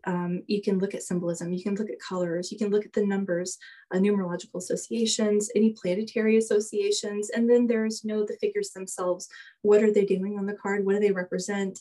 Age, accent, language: 20-39, American, English